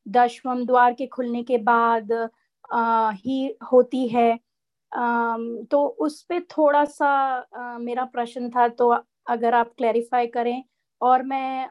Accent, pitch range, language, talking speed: native, 235-270 Hz, Hindi, 140 wpm